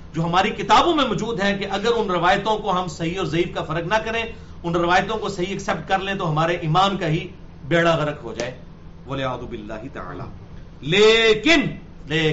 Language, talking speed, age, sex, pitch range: English, 200 wpm, 50-69, male, 170-245 Hz